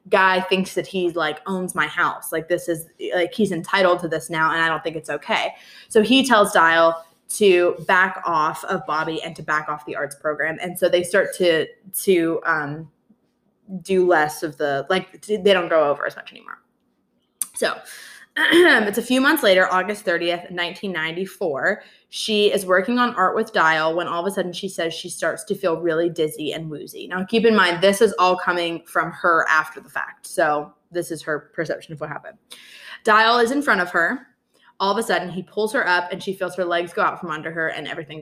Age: 20-39